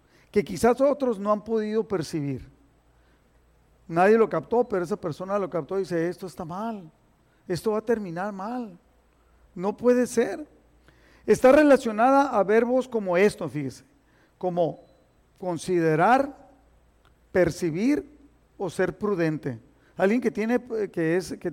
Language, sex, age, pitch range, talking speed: Spanish, male, 50-69, 175-235 Hz, 125 wpm